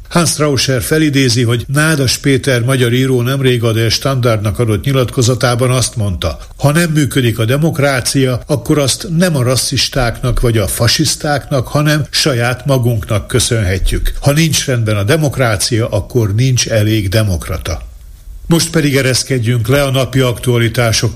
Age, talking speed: 60-79, 140 wpm